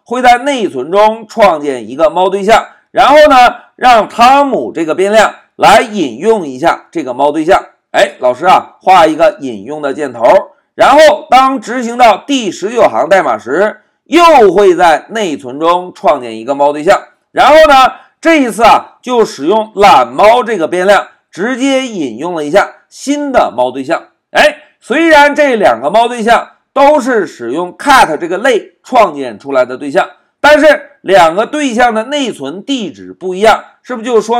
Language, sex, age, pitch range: Chinese, male, 50-69, 200-300 Hz